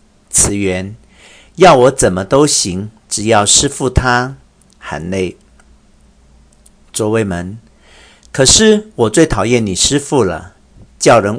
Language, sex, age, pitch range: Chinese, male, 50-69, 90-125 Hz